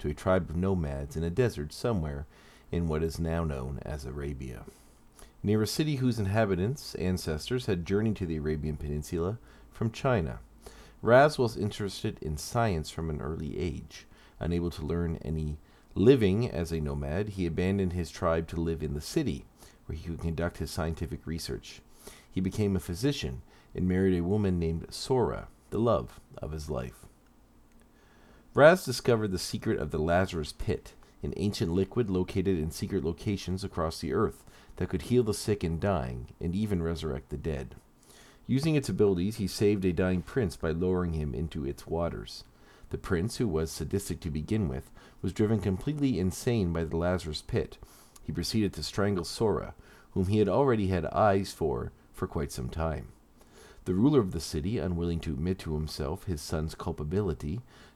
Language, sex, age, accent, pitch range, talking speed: English, male, 40-59, American, 80-100 Hz, 175 wpm